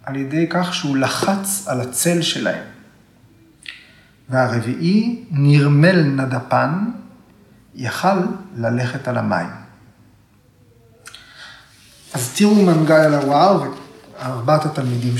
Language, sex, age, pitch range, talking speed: Hebrew, male, 40-59, 125-170 Hz, 85 wpm